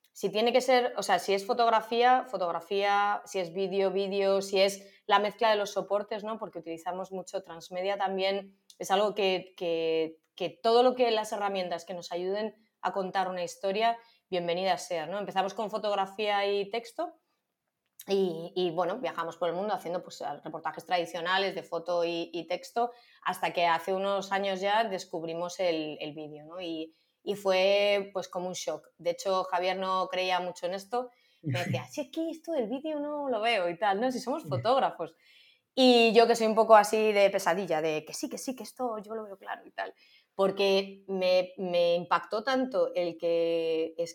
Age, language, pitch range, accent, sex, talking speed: 20-39, Spanish, 175-220 Hz, Spanish, female, 190 wpm